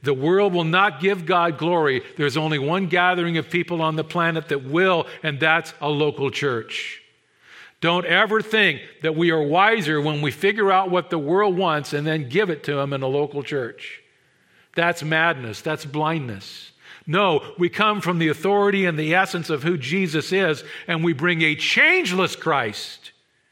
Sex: male